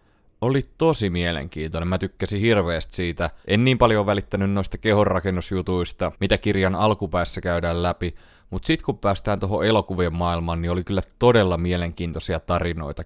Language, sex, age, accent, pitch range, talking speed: Finnish, male, 30-49, native, 85-105 Hz, 140 wpm